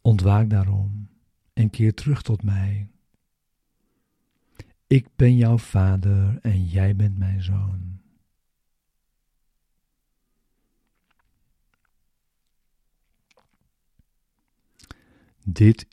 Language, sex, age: Dutch, male, 50-69